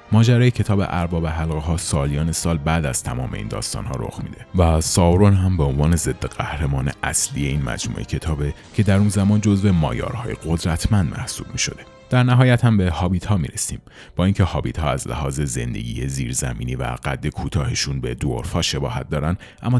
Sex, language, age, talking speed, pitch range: male, Persian, 30-49, 180 wpm, 75-100 Hz